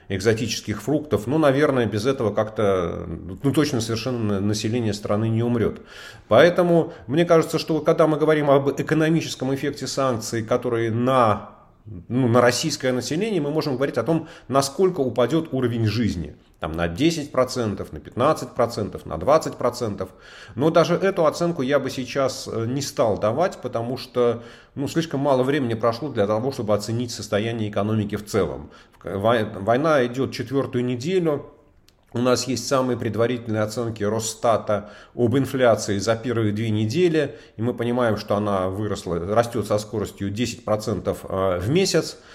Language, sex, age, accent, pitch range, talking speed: Russian, male, 30-49, native, 105-140 Hz, 145 wpm